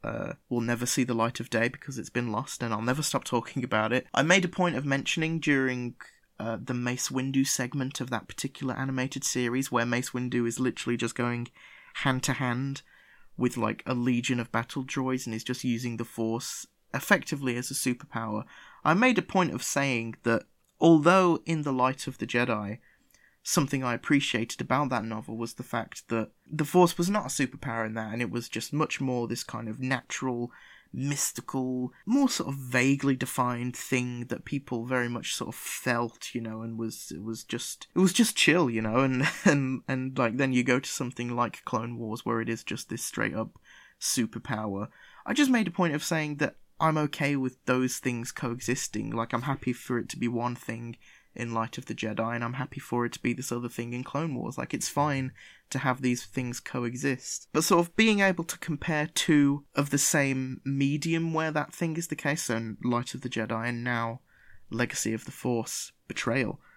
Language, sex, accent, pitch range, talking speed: English, male, British, 120-140 Hz, 205 wpm